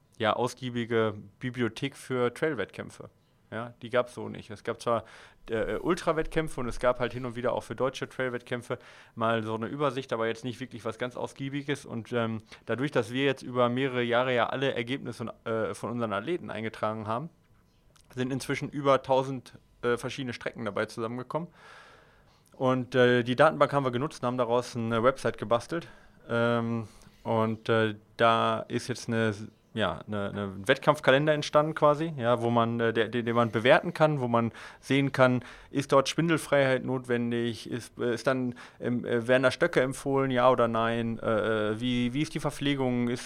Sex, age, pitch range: male, 30-49, 115-135 Hz